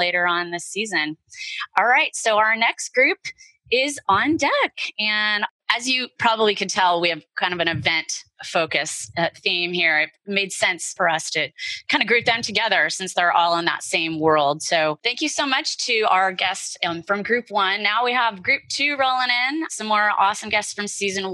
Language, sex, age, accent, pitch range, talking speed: English, female, 20-39, American, 175-225 Hz, 200 wpm